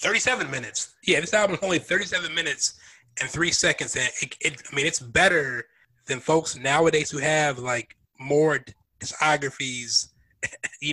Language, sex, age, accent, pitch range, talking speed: English, male, 20-39, American, 130-165 Hz, 155 wpm